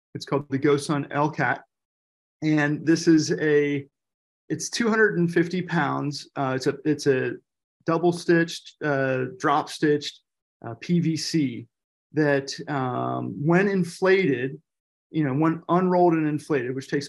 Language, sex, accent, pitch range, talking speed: English, male, American, 135-155 Hz, 125 wpm